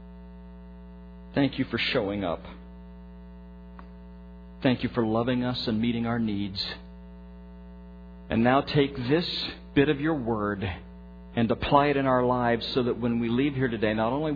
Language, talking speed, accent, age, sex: English, 155 wpm, American, 50-69, male